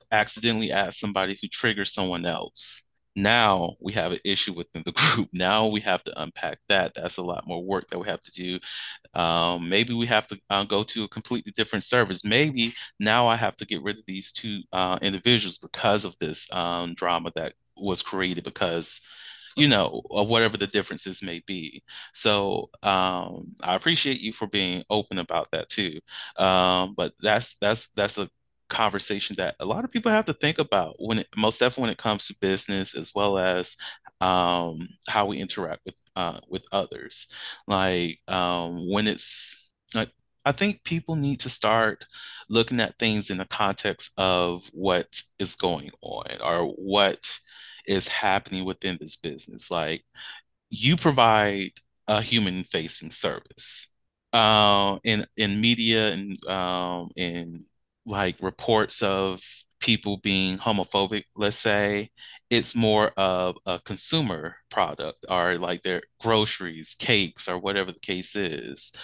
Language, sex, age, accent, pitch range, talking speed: English, male, 30-49, American, 90-110 Hz, 160 wpm